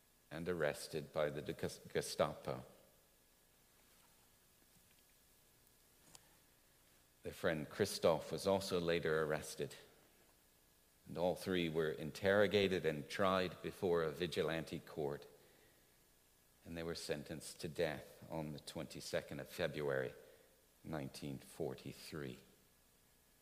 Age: 50-69